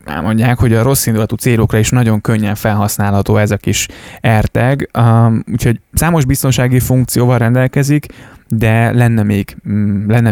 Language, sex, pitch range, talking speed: Hungarian, male, 105-120 Hz, 135 wpm